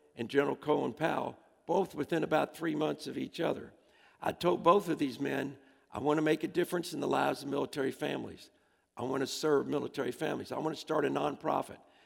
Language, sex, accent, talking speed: English, male, American, 210 wpm